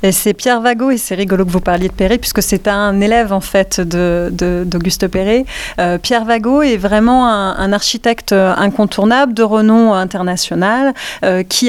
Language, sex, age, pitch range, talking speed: French, female, 30-49, 195-235 Hz, 170 wpm